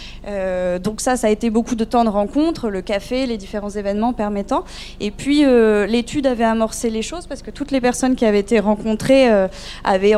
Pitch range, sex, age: 200-240 Hz, female, 20-39